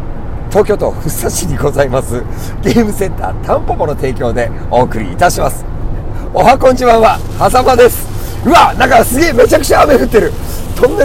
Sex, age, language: male, 50-69, Japanese